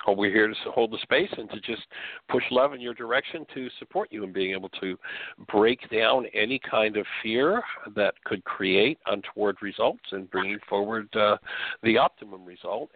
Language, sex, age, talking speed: English, male, 60-79, 180 wpm